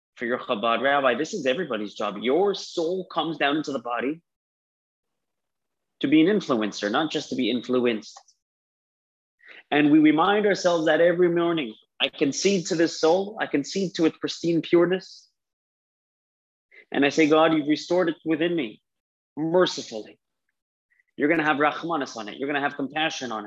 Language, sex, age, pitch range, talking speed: English, male, 30-49, 125-170 Hz, 160 wpm